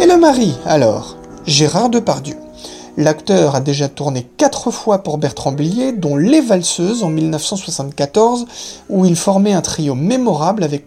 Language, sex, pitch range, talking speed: French, male, 155-230 Hz, 150 wpm